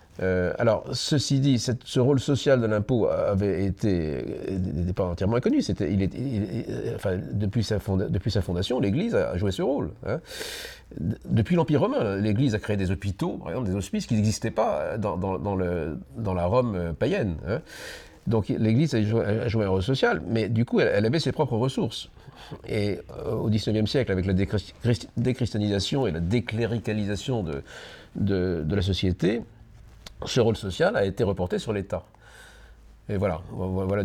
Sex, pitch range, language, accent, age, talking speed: male, 95-120 Hz, French, French, 50-69, 180 wpm